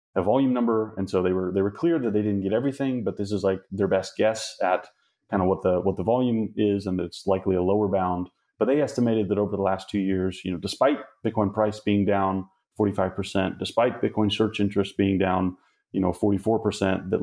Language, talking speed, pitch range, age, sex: English, 235 wpm, 90-100 Hz, 30-49, male